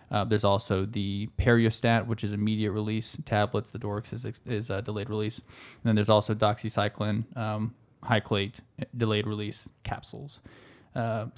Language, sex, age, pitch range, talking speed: English, male, 20-39, 105-115 Hz, 150 wpm